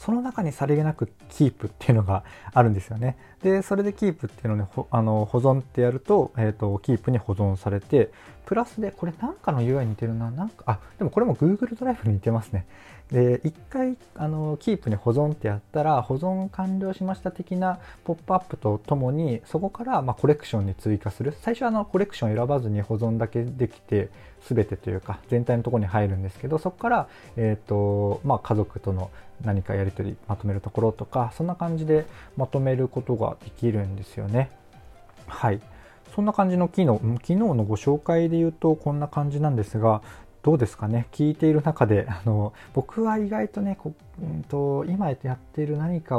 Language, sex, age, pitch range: Japanese, male, 20-39, 105-155 Hz